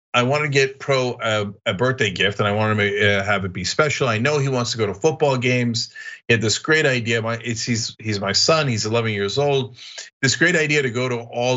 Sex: male